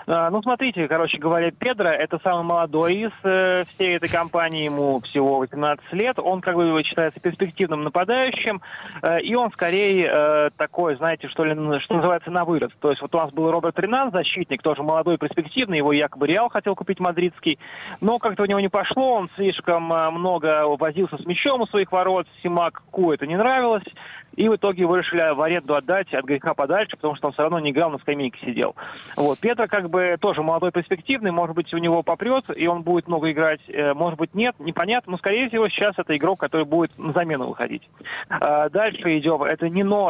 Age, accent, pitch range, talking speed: 20-39, native, 155-190 Hz, 190 wpm